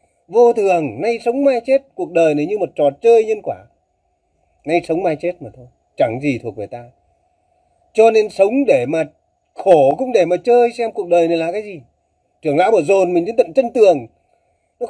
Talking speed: 215 wpm